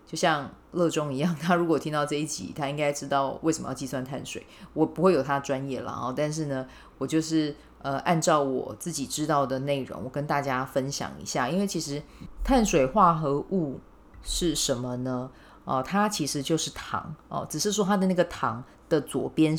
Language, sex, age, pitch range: Chinese, female, 30-49, 135-175 Hz